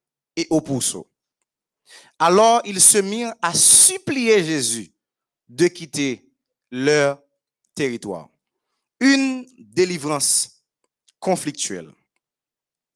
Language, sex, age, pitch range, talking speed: French, male, 30-49, 175-260 Hz, 80 wpm